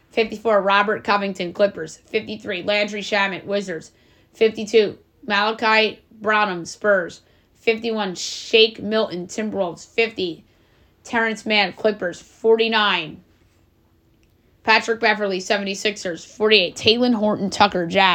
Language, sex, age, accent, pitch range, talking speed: English, female, 20-39, American, 195-220 Hz, 95 wpm